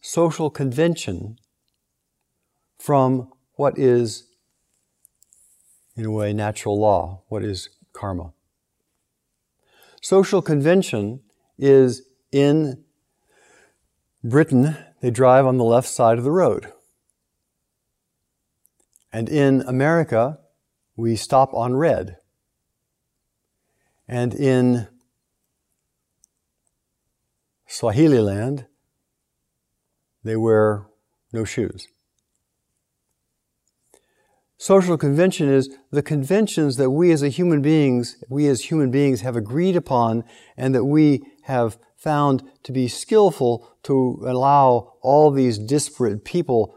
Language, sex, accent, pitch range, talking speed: English, male, American, 110-140 Hz, 95 wpm